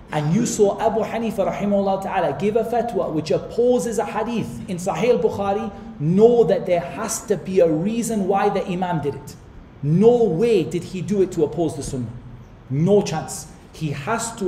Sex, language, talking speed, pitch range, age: male, English, 180 wpm, 155-210 Hz, 40-59